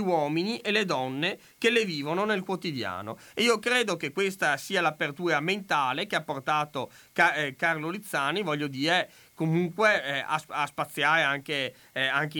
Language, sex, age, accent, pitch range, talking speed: Italian, male, 30-49, native, 140-175 Hz, 135 wpm